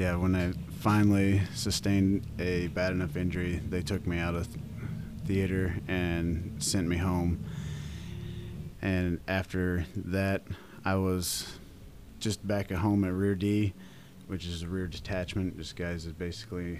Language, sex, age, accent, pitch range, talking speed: English, male, 30-49, American, 90-105 Hz, 145 wpm